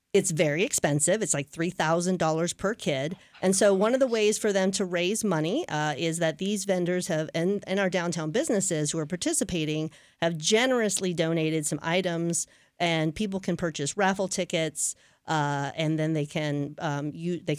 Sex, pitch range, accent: female, 150-190 Hz, American